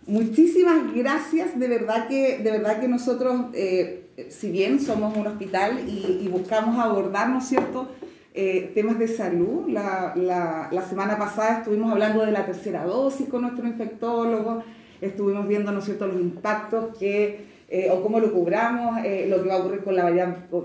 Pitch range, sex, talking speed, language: 200-255 Hz, female, 175 wpm, Spanish